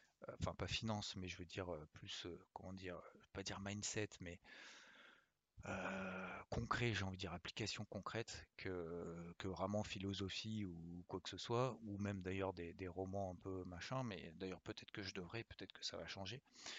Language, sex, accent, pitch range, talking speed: French, male, French, 95-115 Hz, 180 wpm